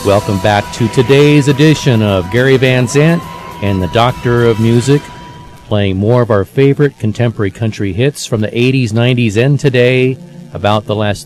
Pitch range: 95-125 Hz